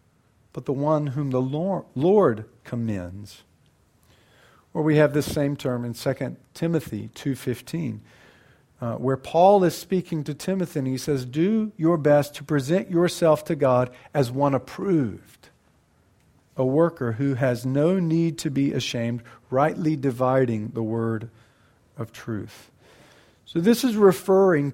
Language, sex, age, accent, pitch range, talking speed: English, male, 50-69, American, 135-180 Hz, 135 wpm